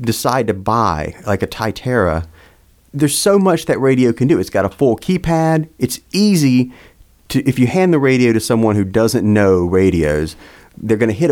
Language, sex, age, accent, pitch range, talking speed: English, male, 40-59, American, 90-115 Hz, 190 wpm